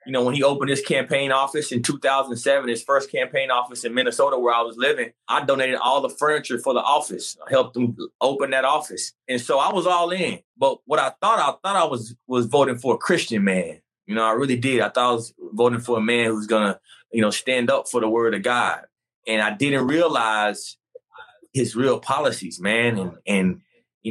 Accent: American